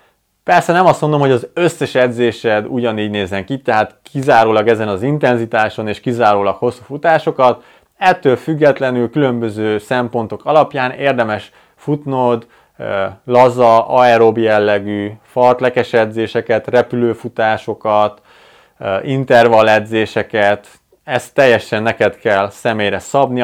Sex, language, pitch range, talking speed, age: male, Hungarian, 110-140 Hz, 105 wpm, 30-49